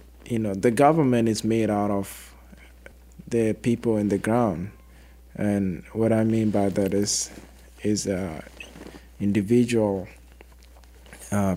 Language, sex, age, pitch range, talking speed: English, male, 20-39, 95-110 Hz, 125 wpm